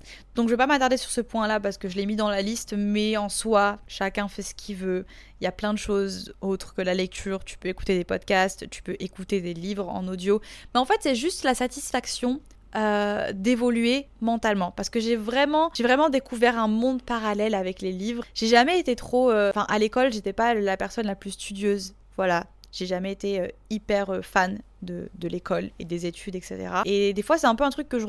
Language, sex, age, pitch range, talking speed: French, female, 20-39, 195-235 Hz, 230 wpm